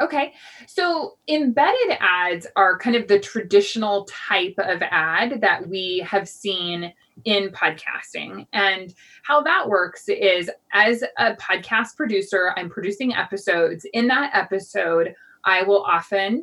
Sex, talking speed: female, 130 wpm